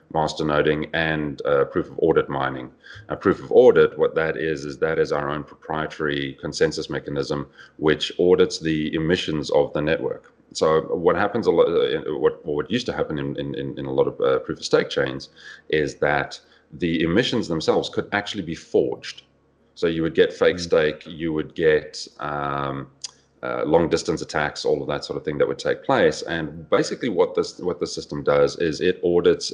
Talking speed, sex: 195 wpm, male